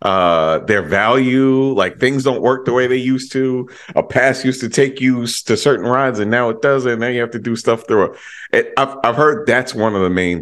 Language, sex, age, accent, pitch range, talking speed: English, male, 30-49, American, 95-130 Hz, 235 wpm